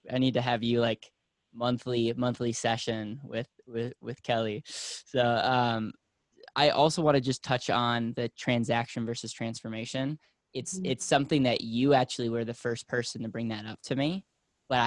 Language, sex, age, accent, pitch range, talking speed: English, male, 10-29, American, 115-130 Hz, 175 wpm